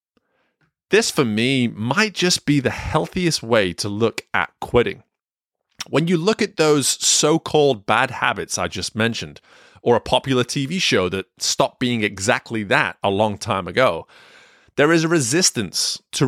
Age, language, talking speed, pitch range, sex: 20-39, English, 160 wpm, 100-150 Hz, male